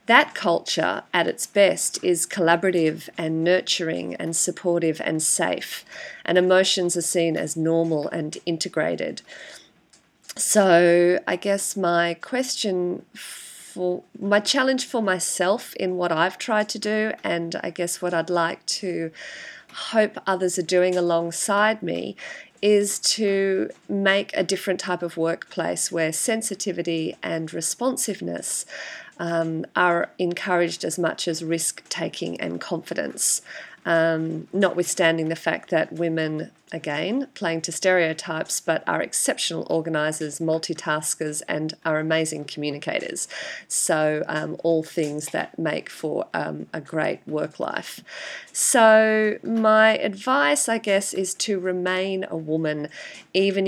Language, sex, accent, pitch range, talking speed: English, female, Australian, 165-195 Hz, 125 wpm